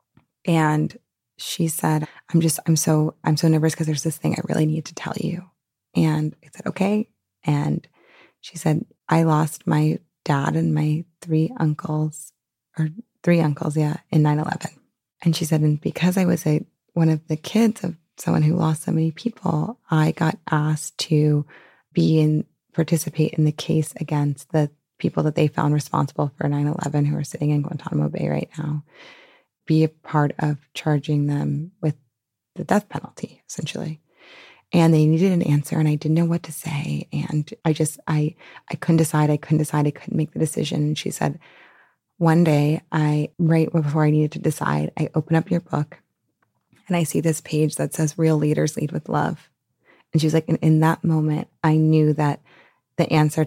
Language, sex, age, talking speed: English, female, 20-39, 190 wpm